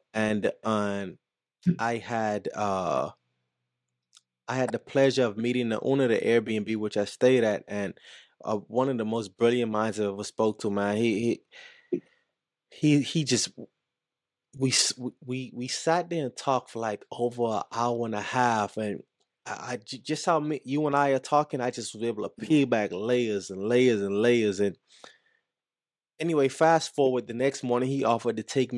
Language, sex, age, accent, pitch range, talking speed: English, male, 20-39, American, 110-135 Hz, 180 wpm